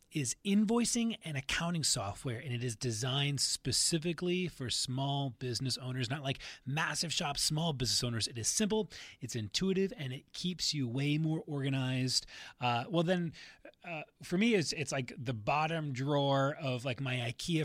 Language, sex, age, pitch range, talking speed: English, male, 30-49, 135-175 Hz, 165 wpm